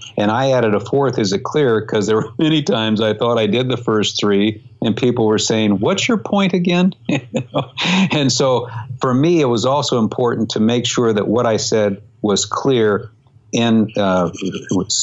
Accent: American